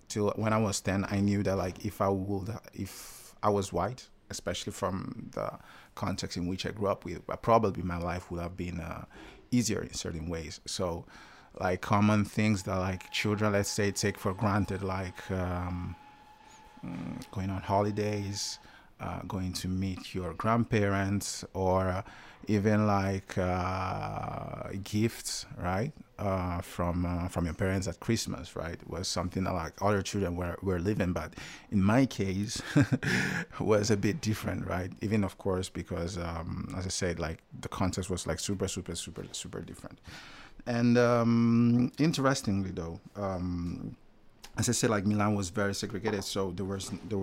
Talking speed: 165 wpm